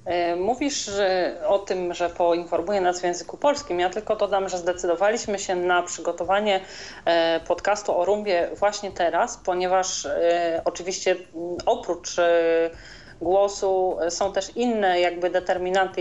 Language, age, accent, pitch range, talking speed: Polish, 40-59, native, 175-205 Hz, 115 wpm